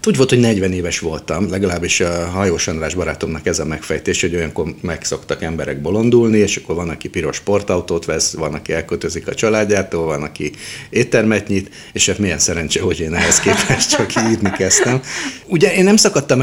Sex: male